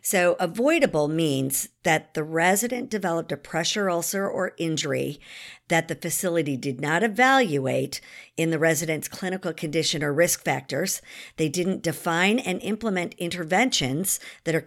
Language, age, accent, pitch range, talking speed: English, 50-69, American, 150-180 Hz, 140 wpm